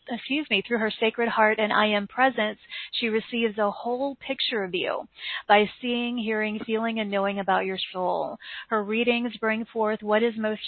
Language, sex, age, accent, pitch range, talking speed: English, female, 40-59, American, 205-230 Hz, 185 wpm